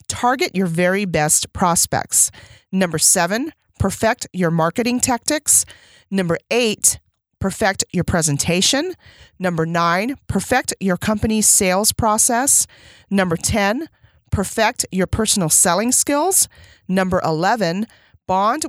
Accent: American